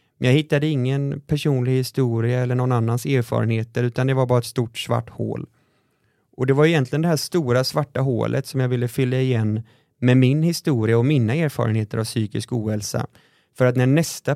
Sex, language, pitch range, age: male, Swedish, 115-135 Hz, 20-39